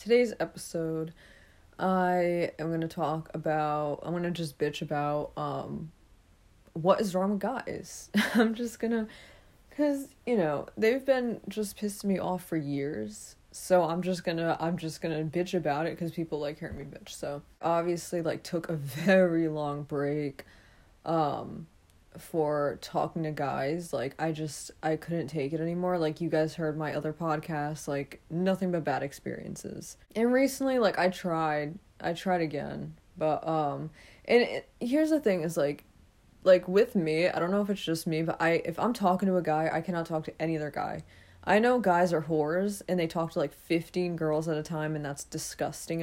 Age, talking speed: 20-39, 180 wpm